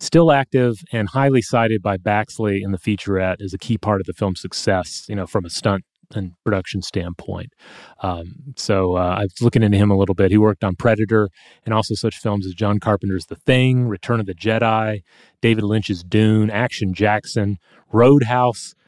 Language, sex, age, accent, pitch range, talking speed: English, male, 30-49, American, 100-120 Hz, 190 wpm